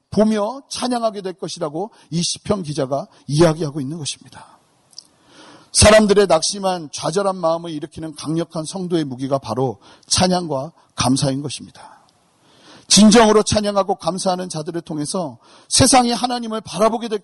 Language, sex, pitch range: Korean, male, 140-190 Hz